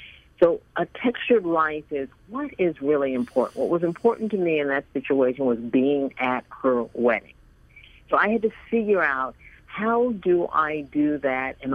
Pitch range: 130-180 Hz